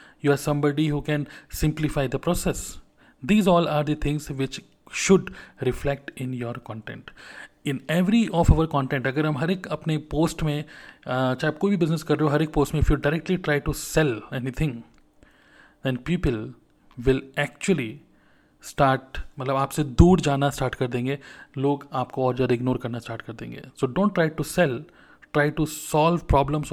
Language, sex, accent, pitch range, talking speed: Hindi, male, native, 130-150 Hz, 180 wpm